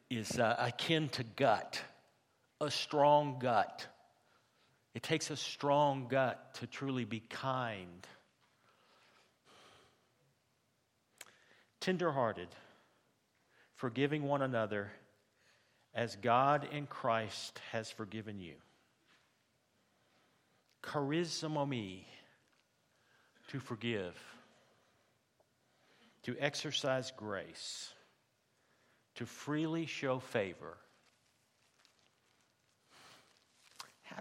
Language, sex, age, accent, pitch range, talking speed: English, male, 50-69, American, 120-160 Hz, 70 wpm